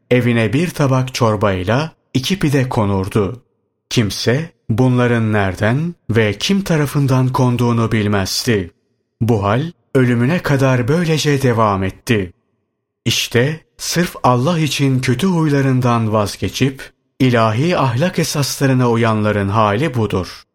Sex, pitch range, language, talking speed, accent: male, 110-140 Hz, Turkish, 100 wpm, native